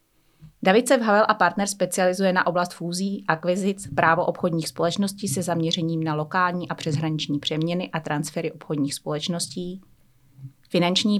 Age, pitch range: 30-49, 160-190 Hz